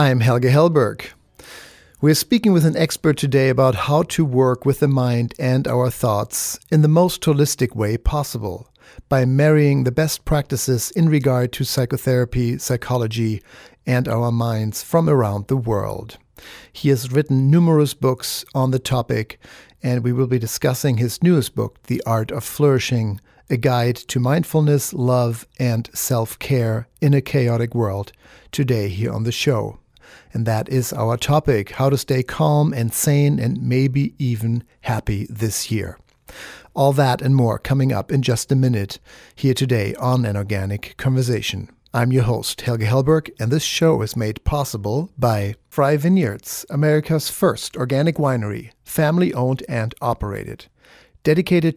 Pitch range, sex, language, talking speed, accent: 115-145 Hz, male, English, 155 wpm, German